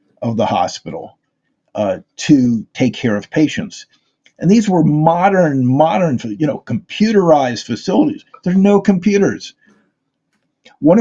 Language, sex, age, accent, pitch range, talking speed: English, male, 50-69, American, 130-175 Hz, 125 wpm